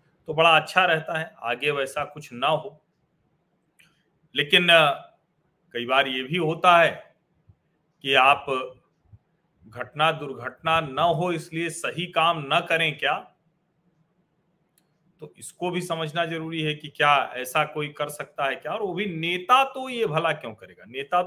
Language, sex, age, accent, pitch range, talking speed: Hindi, male, 40-59, native, 140-170 Hz, 150 wpm